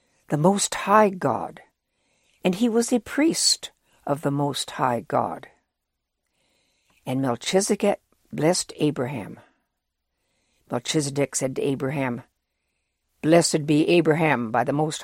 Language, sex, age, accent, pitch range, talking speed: English, female, 60-79, American, 140-190 Hz, 110 wpm